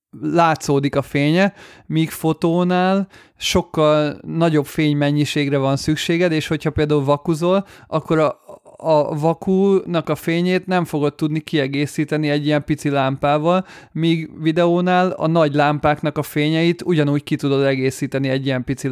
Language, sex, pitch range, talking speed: Hungarian, male, 140-165 Hz, 135 wpm